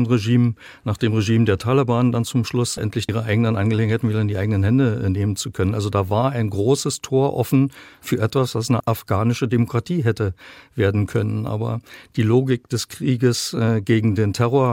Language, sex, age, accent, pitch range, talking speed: German, male, 50-69, German, 105-120 Hz, 190 wpm